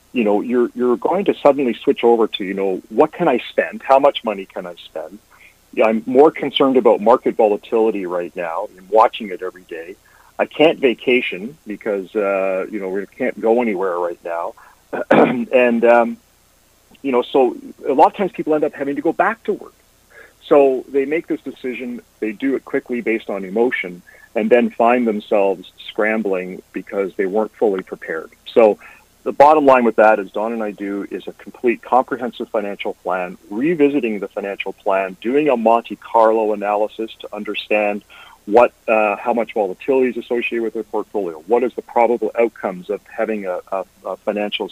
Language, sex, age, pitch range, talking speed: English, male, 40-59, 105-135 Hz, 185 wpm